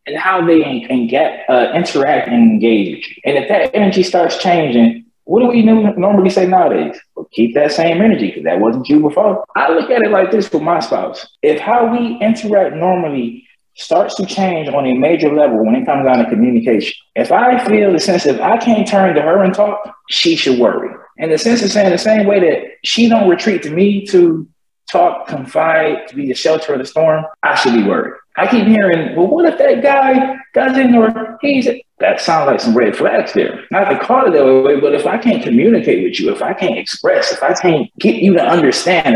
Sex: male